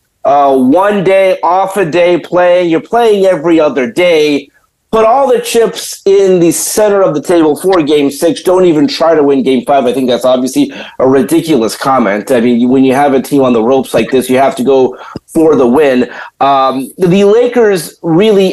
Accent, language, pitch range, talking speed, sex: American, English, 145-210 Hz, 205 wpm, male